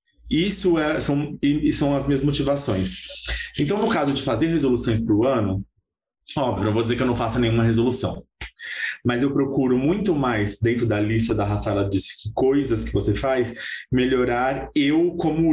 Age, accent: 20-39, Brazilian